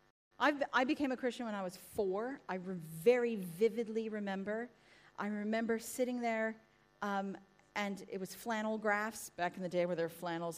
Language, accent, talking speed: English, American, 170 wpm